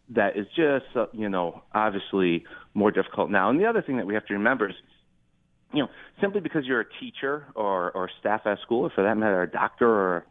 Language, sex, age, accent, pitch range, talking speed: English, male, 40-59, American, 95-125 Hz, 220 wpm